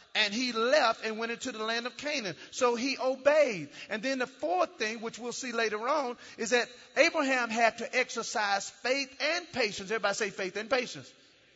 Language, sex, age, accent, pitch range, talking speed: English, male, 40-59, American, 195-260 Hz, 190 wpm